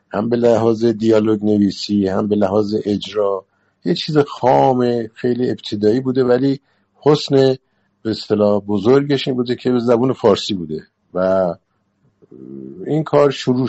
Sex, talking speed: male, 130 wpm